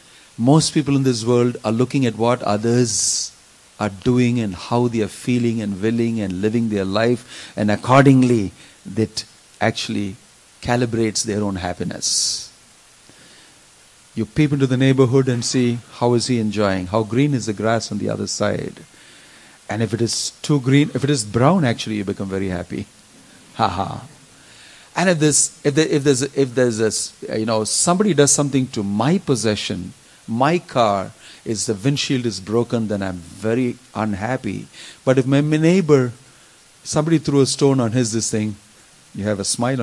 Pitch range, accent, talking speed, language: 110-140 Hz, Indian, 170 wpm, English